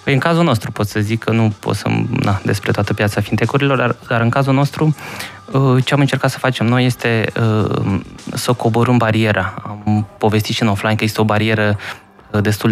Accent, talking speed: native, 190 wpm